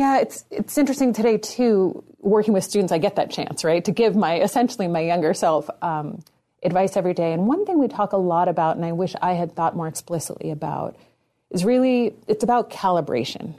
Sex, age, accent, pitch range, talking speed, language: female, 30-49, American, 165-200 Hz, 210 wpm, English